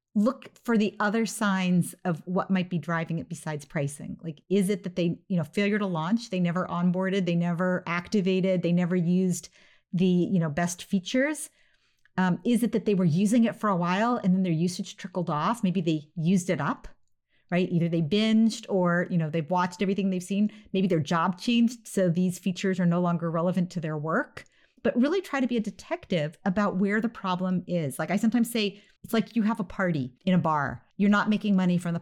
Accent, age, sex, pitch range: American, 40-59, female, 180-215 Hz